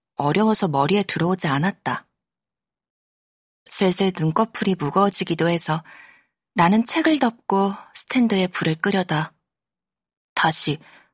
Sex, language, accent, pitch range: female, Korean, native, 160-215 Hz